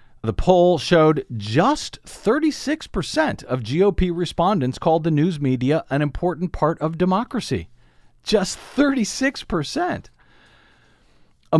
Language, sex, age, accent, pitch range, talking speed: English, male, 50-69, American, 105-160 Hz, 115 wpm